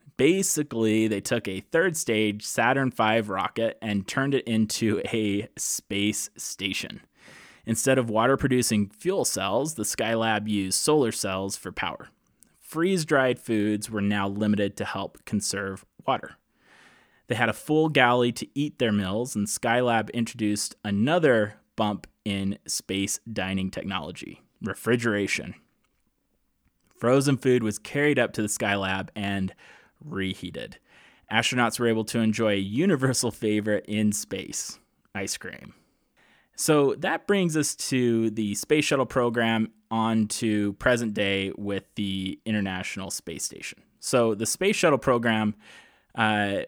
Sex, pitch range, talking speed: male, 100-120 Hz, 130 wpm